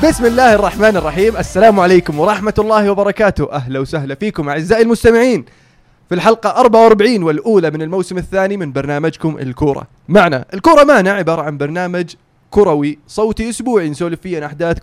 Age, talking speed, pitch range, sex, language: 20-39, 150 wpm, 155-210 Hz, male, Arabic